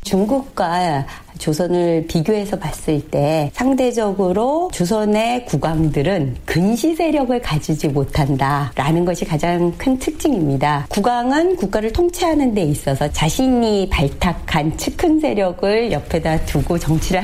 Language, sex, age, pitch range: Korean, female, 40-59, 155-260 Hz